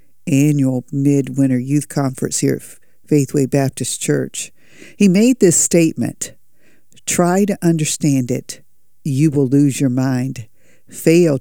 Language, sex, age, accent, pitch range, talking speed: English, female, 50-69, American, 130-165 Hz, 120 wpm